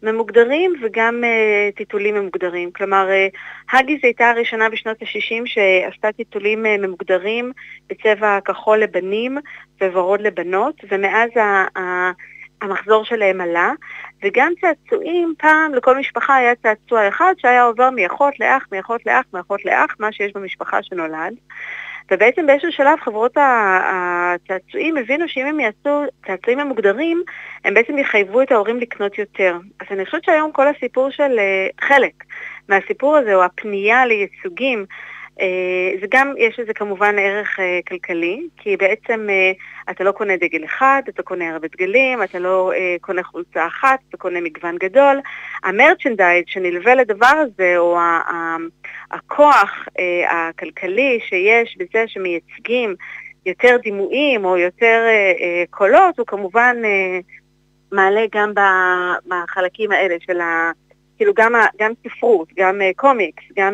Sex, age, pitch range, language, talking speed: female, 30-49, 185-260 Hz, Hebrew, 140 wpm